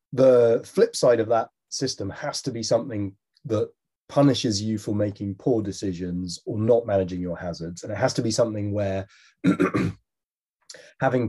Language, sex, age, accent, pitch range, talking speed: English, male, 30-49, British, 95-125 Hz, 160 wpm